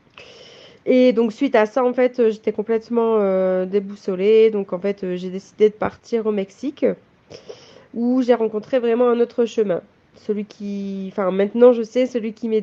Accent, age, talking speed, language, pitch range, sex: French, 20-39, 170 wpm, French, 220-265 Hz, female